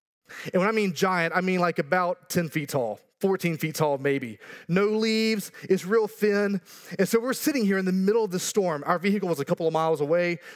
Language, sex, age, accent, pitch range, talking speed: English, male, 30-49, American, 170-220 Hz, 225 wpm